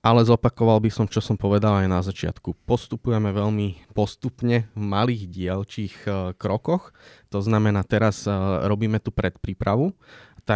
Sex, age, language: male, 20-39, Slovak